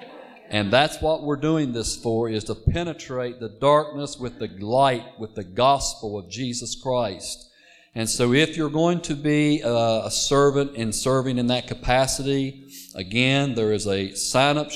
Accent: American